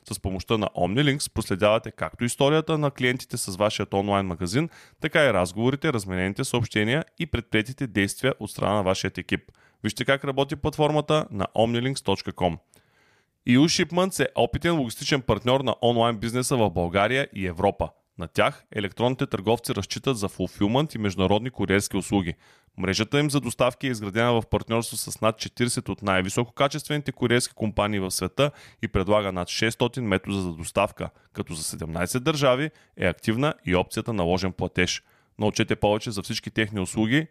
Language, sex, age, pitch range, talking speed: Bulgarian, male, 20-39, 95-125 Hz, 155 wpm